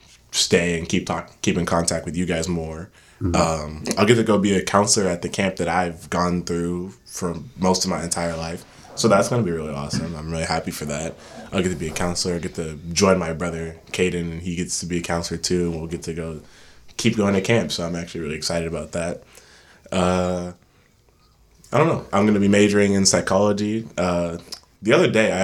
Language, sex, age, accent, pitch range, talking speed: English, male, 20-39, American, 85-95 Hz, 225 wpm